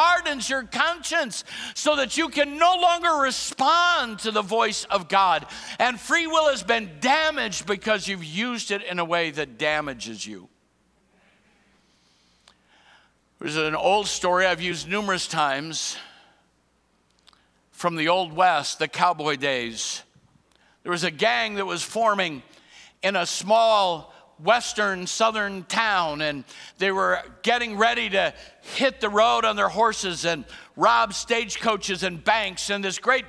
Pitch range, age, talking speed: 185-255 Hz, 60-79, 140 wpm